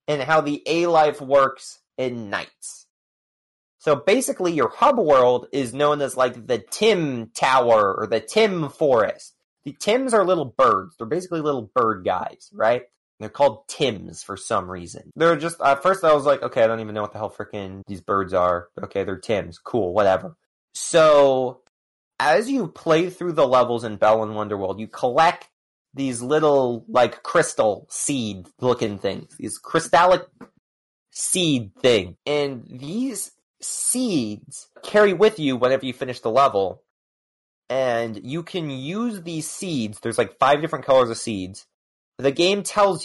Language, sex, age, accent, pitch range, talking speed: English, male, 30-49, American, 110-165 Hz, 160 wpm